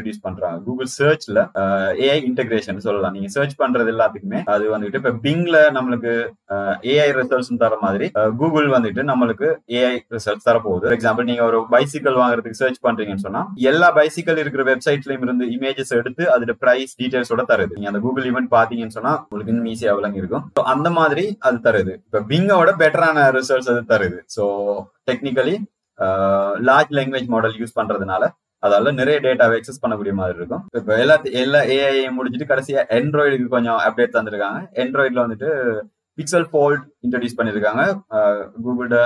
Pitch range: 115-140 Hz